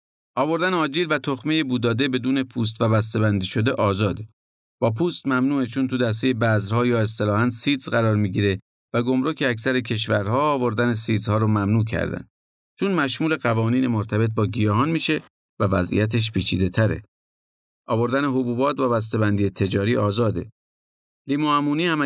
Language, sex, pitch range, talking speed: Persian, male, 100-130 Hz, 140 wpm